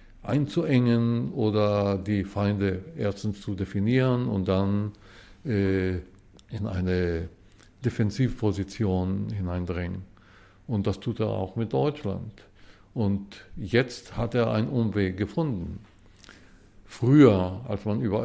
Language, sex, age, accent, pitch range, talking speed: German, male, 50-69, German, 95-115 Hz, 105 wpm